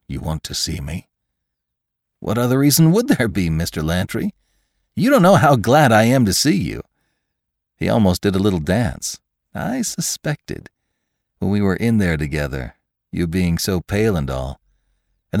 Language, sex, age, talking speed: English, male, 50-69, 170 wpm